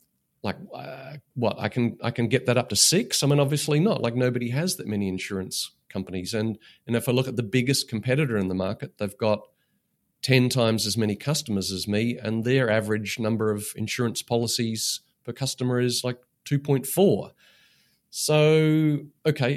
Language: English